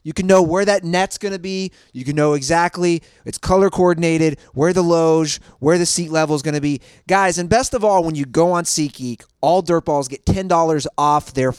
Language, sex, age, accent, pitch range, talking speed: English, male, 30-49, American, 145-195 Hz, 230 wpm